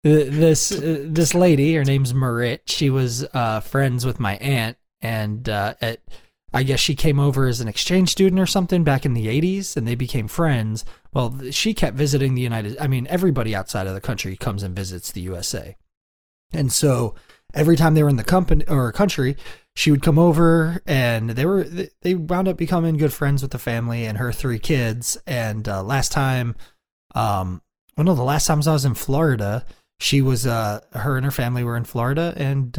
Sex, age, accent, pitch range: male, 20-39, American, 110-150 Hz